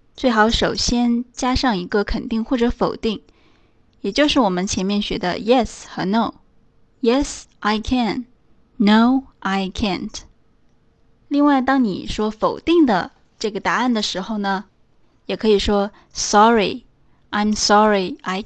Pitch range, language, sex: 205-255 Hz, Chinese, female